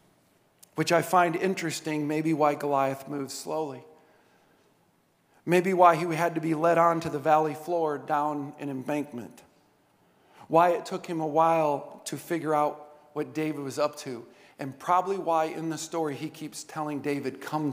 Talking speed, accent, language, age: 165 wpm, American, English, 50-69